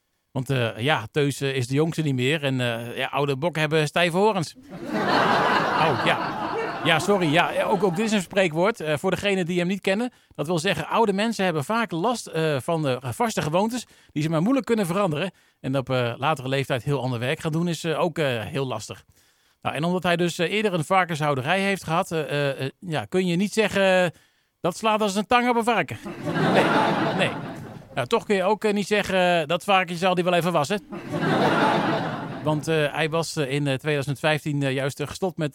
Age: 40-59